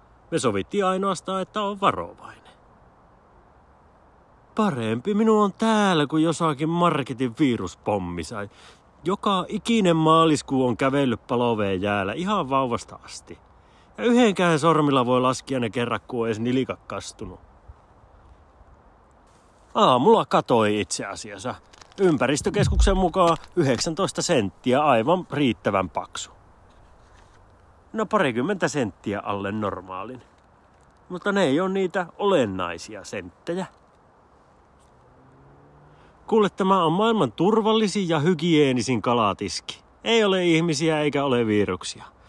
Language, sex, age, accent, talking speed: Finnish, male, 30-49, native, 100 wpm